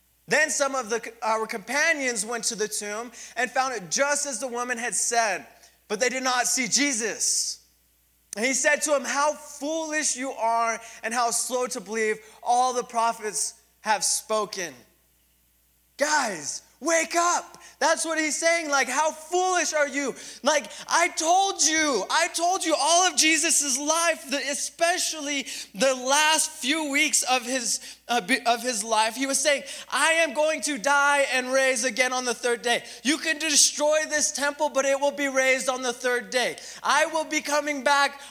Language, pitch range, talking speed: English, 225-290 Hz, 170 wpm